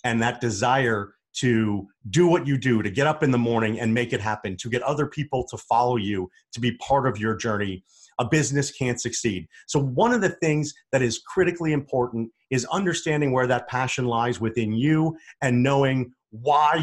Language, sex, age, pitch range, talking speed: English, male, 30-49, 115-140 Hz, 195 wpm